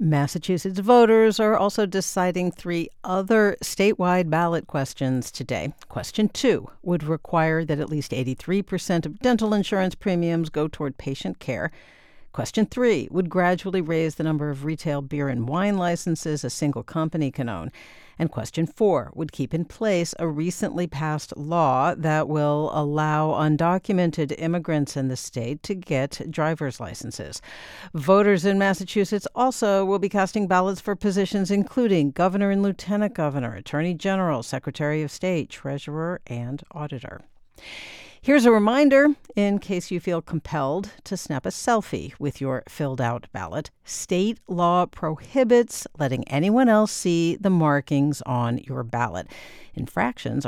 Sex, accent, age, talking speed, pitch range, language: female, American, 50-69, 145 wpm, 145-195 Hz, English